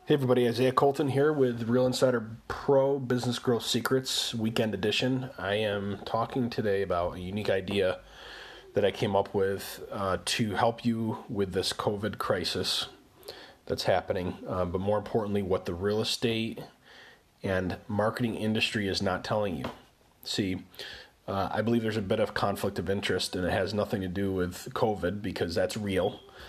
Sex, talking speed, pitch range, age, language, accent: male, 170 wpm, 100-120 Hz, 30-49, English, American